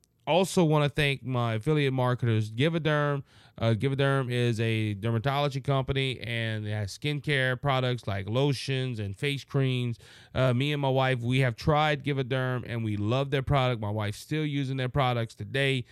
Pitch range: 115-140 Hz